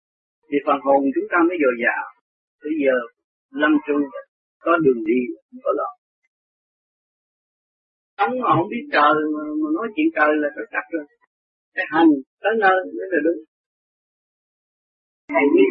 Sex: male